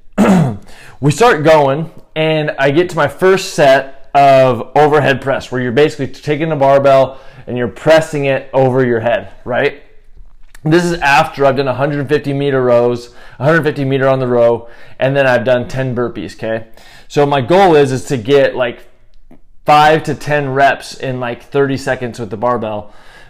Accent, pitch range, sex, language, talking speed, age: American, 120-150 Hz, male, English, 170 wpm, 20-39